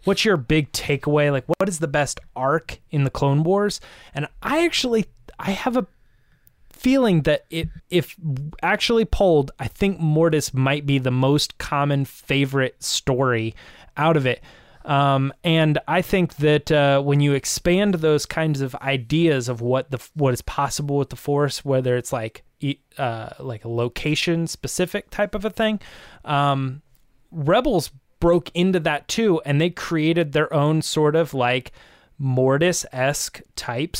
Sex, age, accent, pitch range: male, 20-39, American, 135-170 Hz